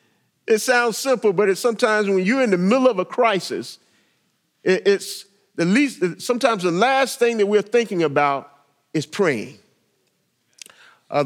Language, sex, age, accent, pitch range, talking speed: English, male, 50-69, American, 190-250 Hz, 150 wpm